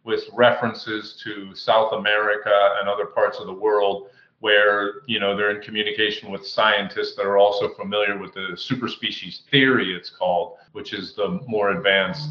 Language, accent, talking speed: English, American, 165 wpm